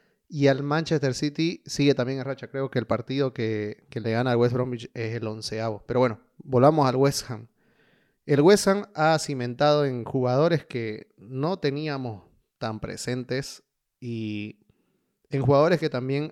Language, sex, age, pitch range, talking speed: Spanish, male, 30-49, 120-165 Hz, 165 wpm